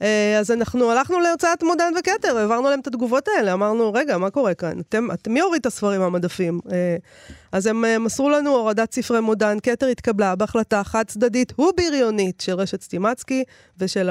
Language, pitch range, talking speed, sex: Hebrew, 190-235 Hz, 170 wpm, female